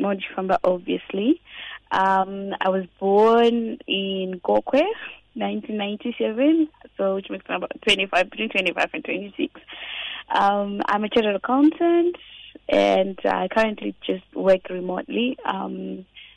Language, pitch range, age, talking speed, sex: English, 180-225 Hz, 20-39, 120 wpm, female